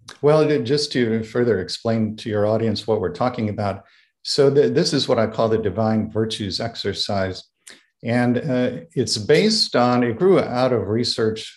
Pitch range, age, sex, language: 105-125 Hz, 50-69, male, English